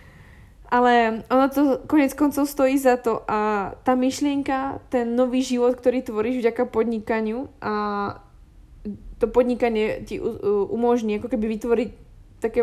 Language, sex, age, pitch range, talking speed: Slovak, female, 20-39, 215-245 Hz, 130 wpm